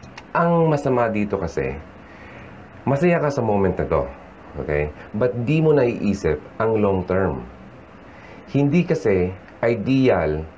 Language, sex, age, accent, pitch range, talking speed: Filipino, male, 30-49, native, 85-115 Hz, 115 wpm